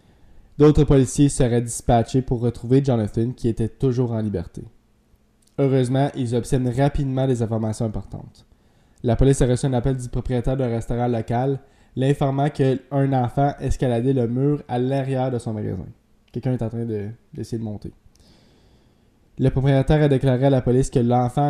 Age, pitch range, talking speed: 20-39, 115-140 Hz, 160 wpm